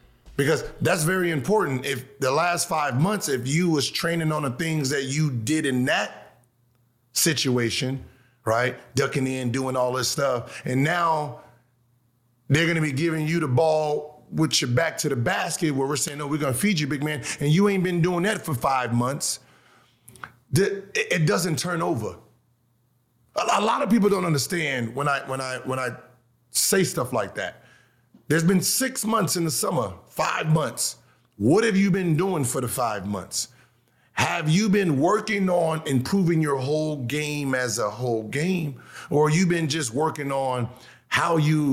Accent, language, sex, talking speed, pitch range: American, English, male, 175 wpm, 125-160 Hz